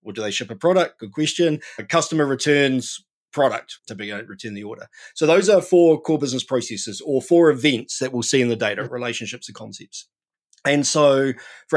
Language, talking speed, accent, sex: English, 210 wpm, Australian, male